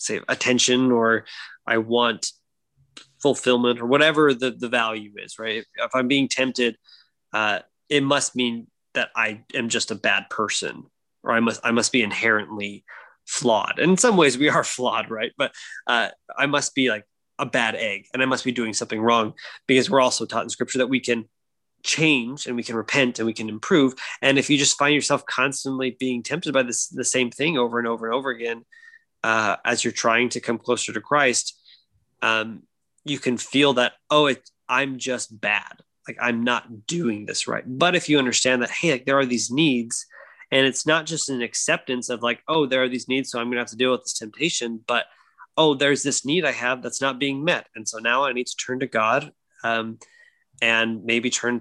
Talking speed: 210 wpm